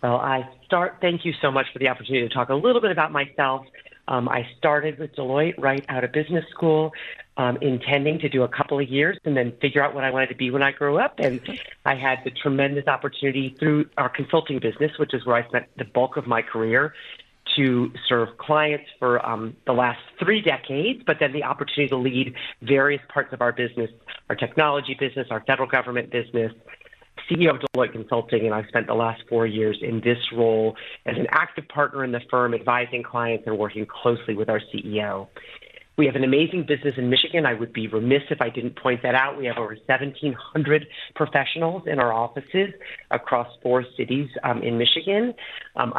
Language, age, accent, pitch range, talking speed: English, 40-59, American, 120-145 Hz, 205 wpm